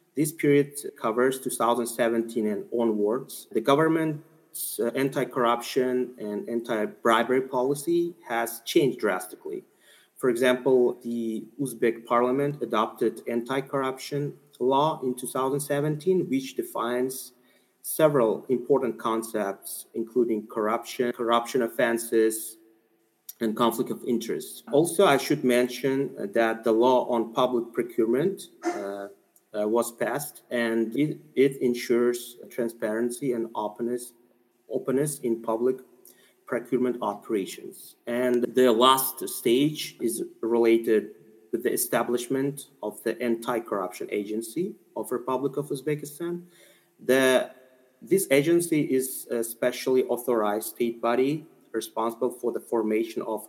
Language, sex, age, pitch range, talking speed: English, male, 30-49, 115-135 Hz, 105 wpm